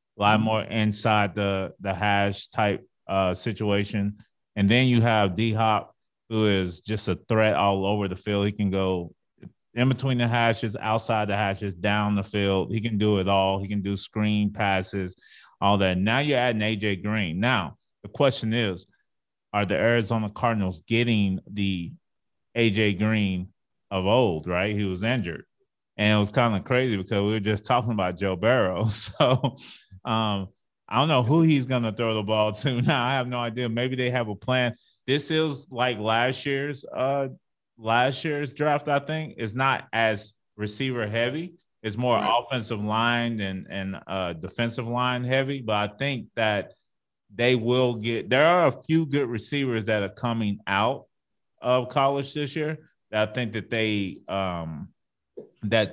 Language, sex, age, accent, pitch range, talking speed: English, male, 30-49, American, 100-125 Hz, 175 wpm